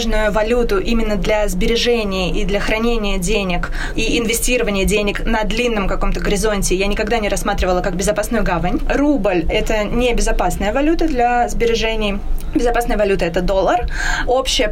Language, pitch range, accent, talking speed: Russian, 190-230 Hz, native, 150 wpm